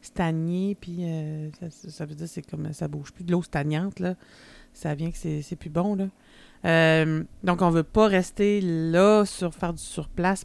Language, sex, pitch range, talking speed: French, female, 160-185 Hz, 210 wpm